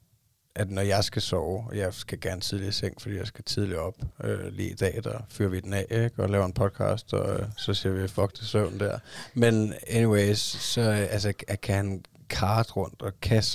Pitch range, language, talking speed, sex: 95-110 Hz, Danish, 215 wpm, male